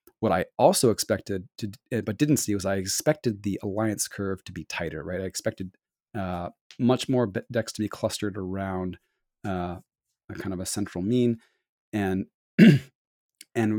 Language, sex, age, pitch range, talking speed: English, male, 30-49, 95-115 Hz, 160 wpm